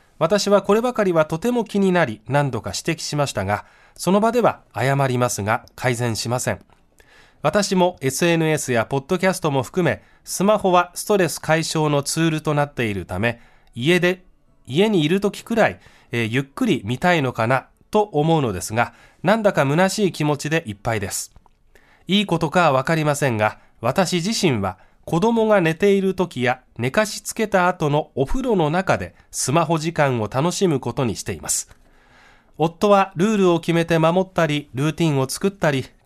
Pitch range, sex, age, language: 125-185 Hz, male, 20-39, Japanese